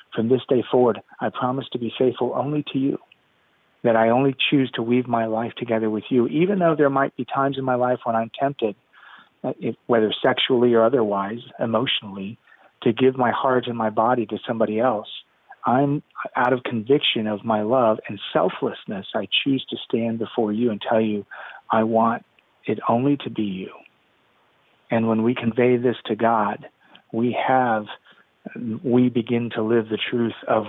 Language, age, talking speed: English, 40-59, 180 wpm